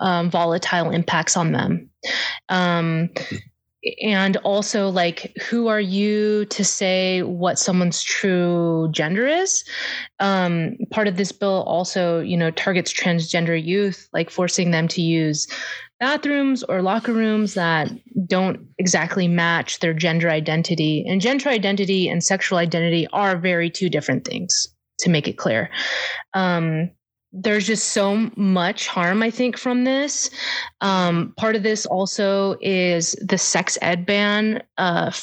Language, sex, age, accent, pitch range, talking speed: English, female, 20-39, American, 175-210 Hz, 140 wpm